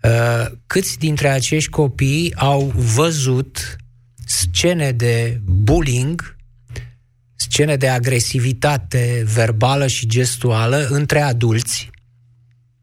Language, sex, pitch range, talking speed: Romanian, male, 120-140 Hz, 80 wpm